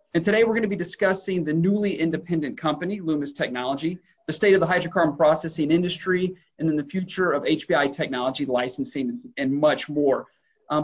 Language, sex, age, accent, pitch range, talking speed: English, male, 40-59, American, 150-190 Hz, 175 wpm